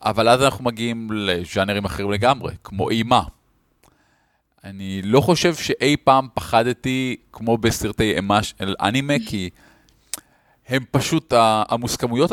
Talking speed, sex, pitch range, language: 115 wpm, male, 100-140 Hz, Hebrew